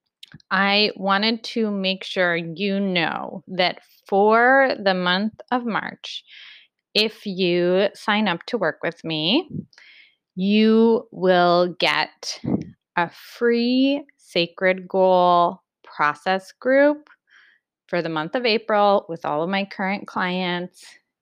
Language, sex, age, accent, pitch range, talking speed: English, female, 20-39, American, 175-225 Hz, 115 wpm